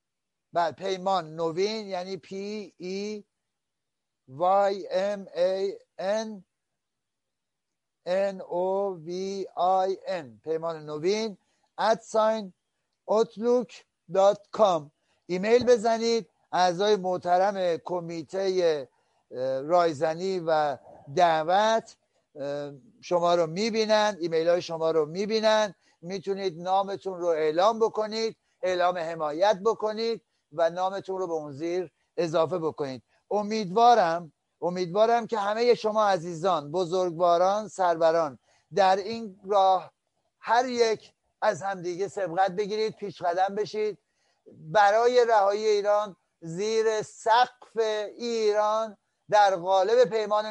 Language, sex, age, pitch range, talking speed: Persian, male, 60-79, 175-215 Hz, 90 wpm